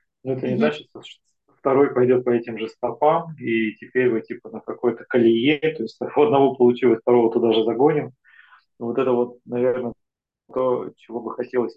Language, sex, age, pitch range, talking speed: Russian, male, 20-39, 115-135 Hz, 180 wpm